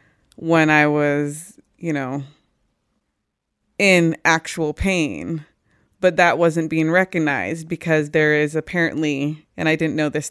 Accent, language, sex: American, English, female